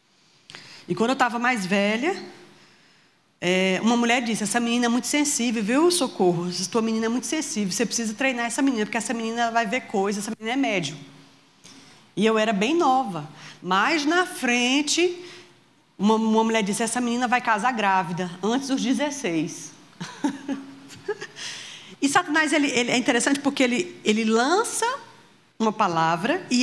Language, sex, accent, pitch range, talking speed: Portuguese, female, Brazilian, 225-335 Hz, 155 wpm